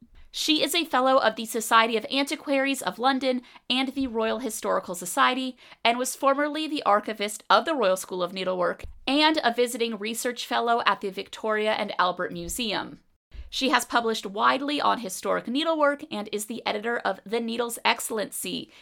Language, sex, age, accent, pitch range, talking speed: English, female, 30-49, American, 200-265 Hz, 170 wpm